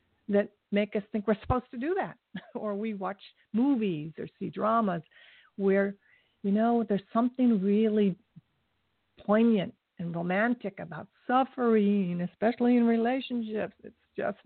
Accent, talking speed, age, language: American, 135 wpm, 50-69, English